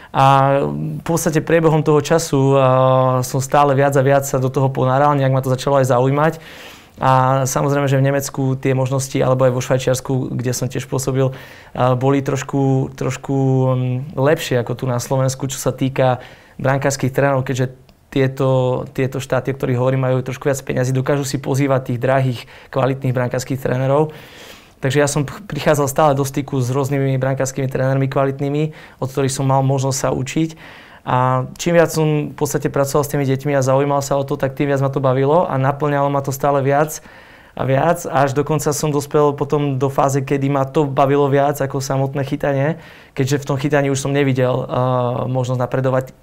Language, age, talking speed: Slovak, 20-39, 185 wpm